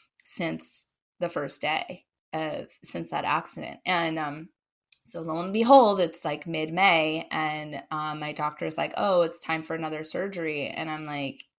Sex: female